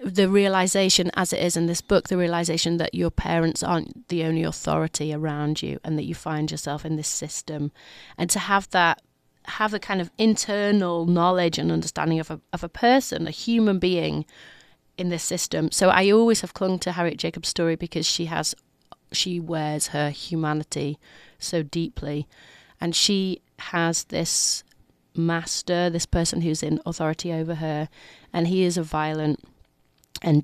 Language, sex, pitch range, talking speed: English, female, 155-180 Hz, 170 wpm